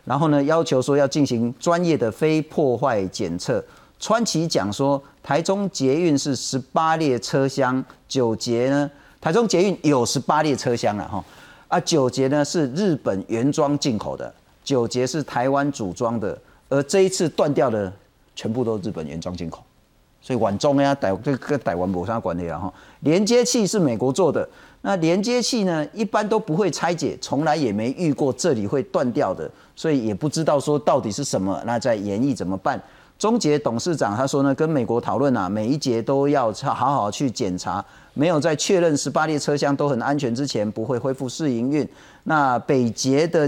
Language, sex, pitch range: Chinese, male, 120-155 Hz